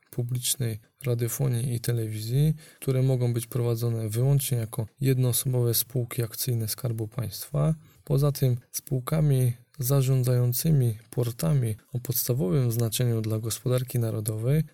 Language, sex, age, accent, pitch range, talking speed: Polish, male, 20-39, native, 115-130 Hz, 105 wpm